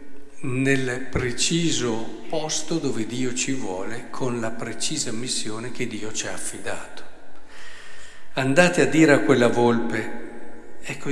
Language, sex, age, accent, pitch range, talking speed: Italian, male, 50-69, native, 130-155 Hz, 125 wpm